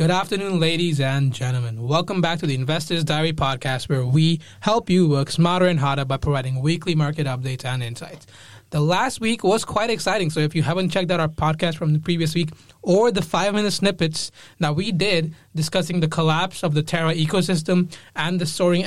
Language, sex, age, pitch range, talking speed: English, male, 20-39, 150-190 Hz, 195 wpm